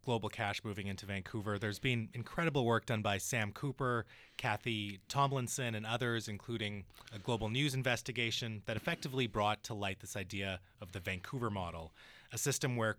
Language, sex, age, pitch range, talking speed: English, male, 30-49, 105-130 Hz, 165 wpm